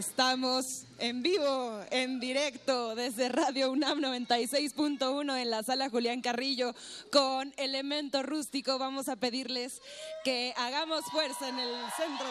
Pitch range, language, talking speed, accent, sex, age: 235-300 Hz, Spanish, 125 wpm, Mexican, female, 20-39